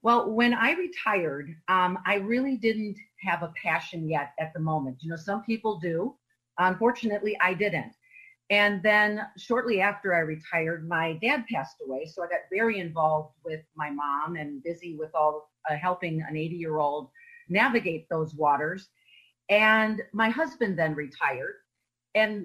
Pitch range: 165-230 Hz